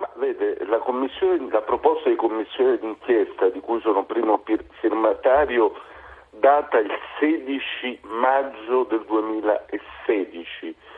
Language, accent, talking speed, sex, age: Italian, native, 95 wpm, male, 50-69